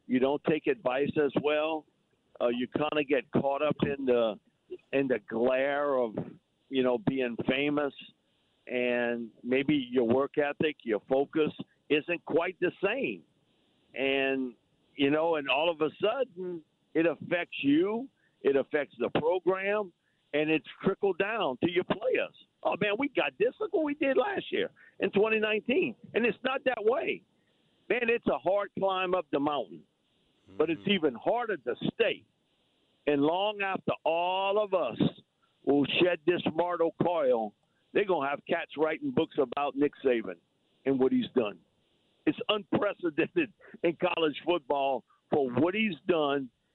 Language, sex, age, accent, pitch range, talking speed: English, male, 50-69, American, 140-195 Hz, 155 wpm